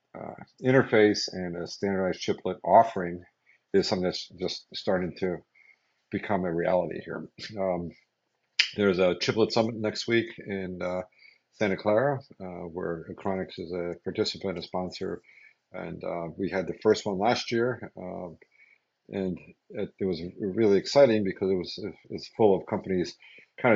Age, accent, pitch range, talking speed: 50-69, American, 90-110 Hz, 150 wpm